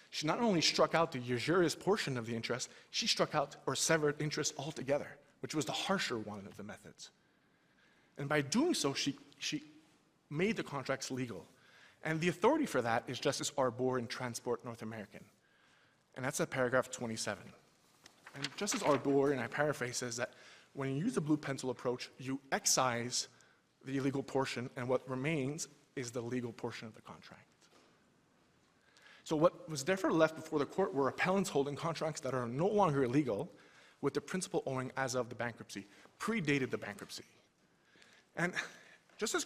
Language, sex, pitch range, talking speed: English, male, 125-155 Hz, 170 wpm